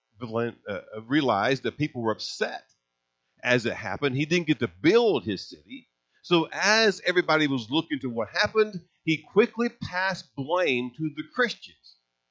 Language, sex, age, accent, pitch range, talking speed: English, male, 50-69, American, 100-155 Hz, 145 wpm